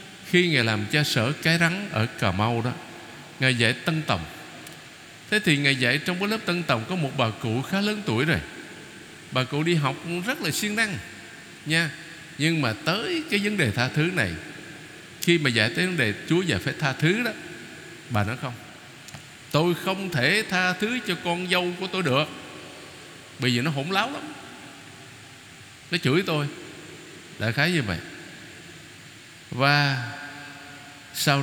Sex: male